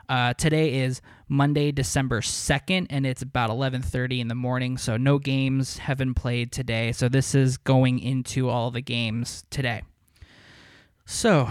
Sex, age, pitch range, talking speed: male, 20-39, 115-145 Hz, 155 wpm